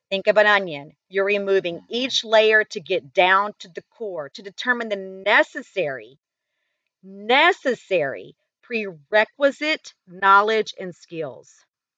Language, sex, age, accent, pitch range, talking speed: English, female, 40-59, American, 200-275 Hz, 115 wpm